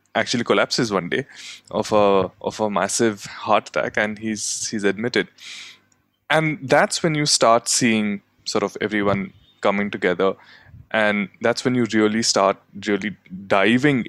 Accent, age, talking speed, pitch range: Indian, 20-39, 145 wpm, 105-125 Hz